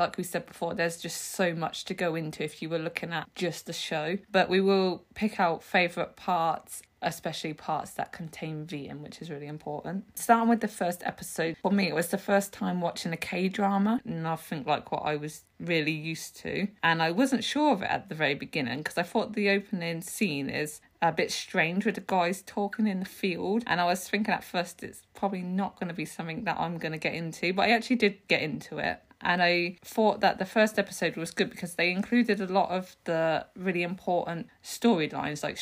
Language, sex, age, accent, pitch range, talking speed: English, female, 20-39, British, 160-195 Hz, 220 wpm